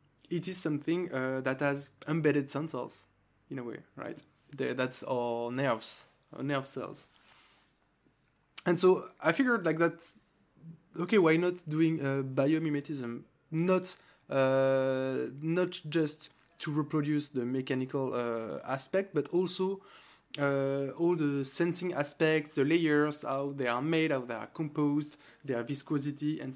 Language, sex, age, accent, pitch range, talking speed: English, male, 20-39, French, 135-165 Hz, 135 wpm